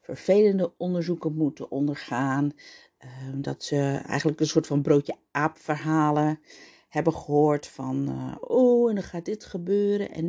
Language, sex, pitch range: Dutch, female, 150-205 Hz